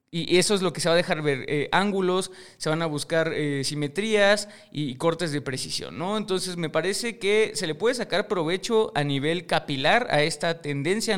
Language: Spanish